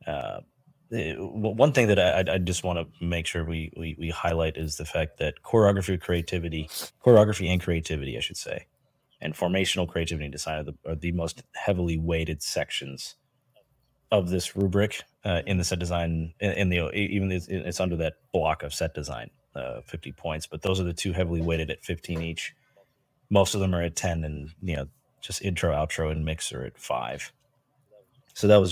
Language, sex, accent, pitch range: English, male, American, 80-100 Hz